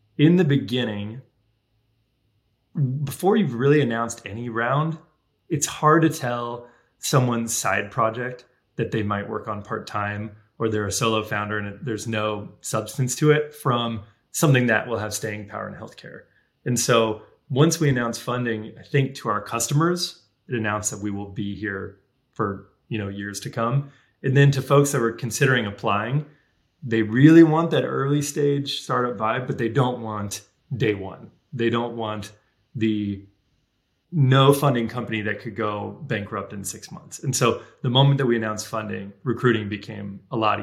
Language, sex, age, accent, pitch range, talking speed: English, male, 20-39, American, 105-135 Hz, 165 wpm